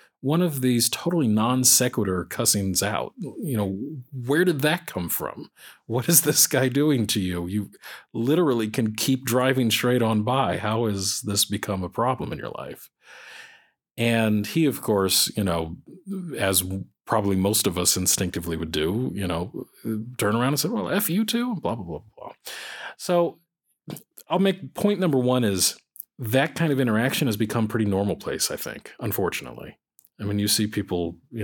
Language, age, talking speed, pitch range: English, 40-59, 175 wpm, 95-125 Hz